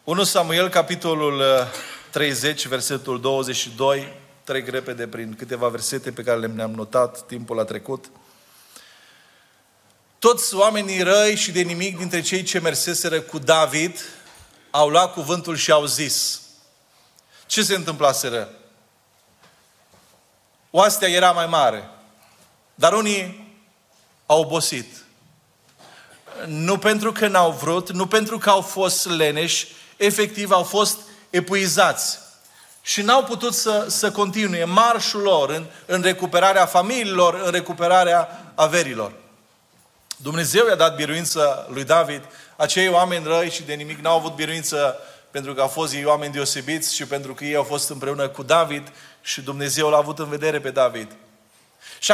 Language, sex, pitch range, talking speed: Romanian, male, 145-195 Hz, 135 wpm